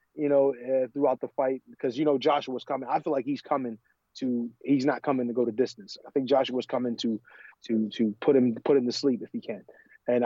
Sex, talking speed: male, 240 wpm